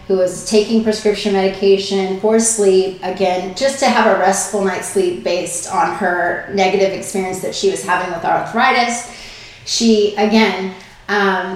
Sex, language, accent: female, English, American